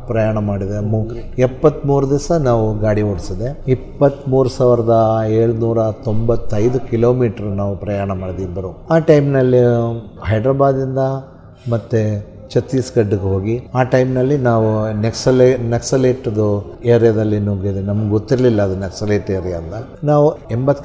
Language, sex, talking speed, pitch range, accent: Kannada, male, 110 wpm, 105-135 Hz, native